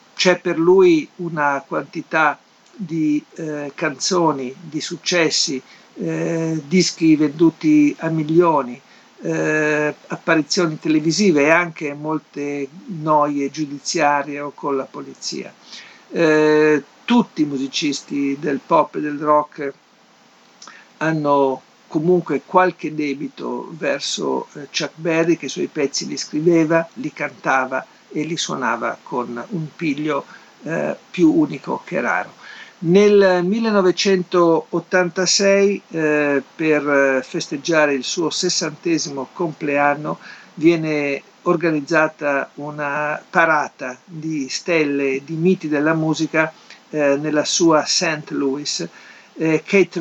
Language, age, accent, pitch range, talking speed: Italian, 60-79, native, 145-175 Hz, 105 wpm